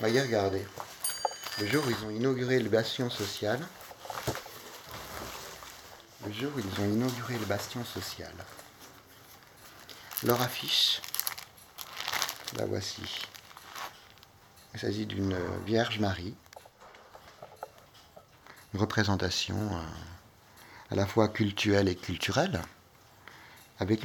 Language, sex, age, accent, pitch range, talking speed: French, male, 50-69, French, 95-120 Hz, 95 wpm